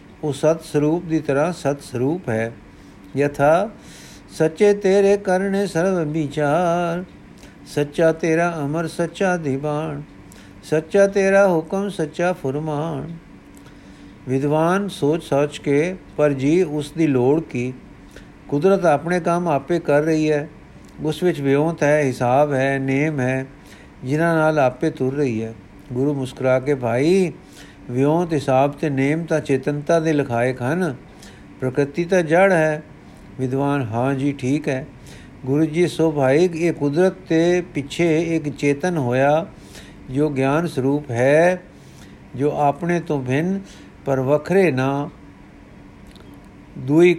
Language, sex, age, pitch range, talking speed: Punjabi, male, 50-69, 130-165 Hz, 120 wpm